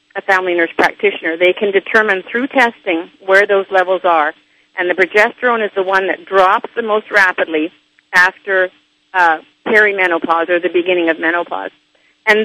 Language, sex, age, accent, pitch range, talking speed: English, female, 50-69, American, 185-220 Hz, 160 wpm